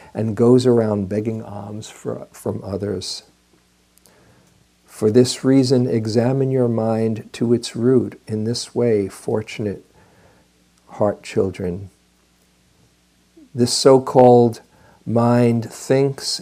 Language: English